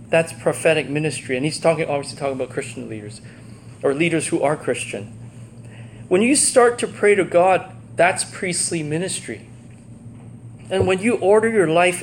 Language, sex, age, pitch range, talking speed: English, male, 30-49, 120-180 Hz, 160 wpm